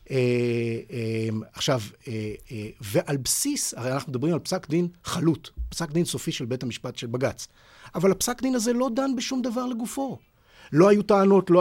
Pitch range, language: 130-195 Hz, Hebrew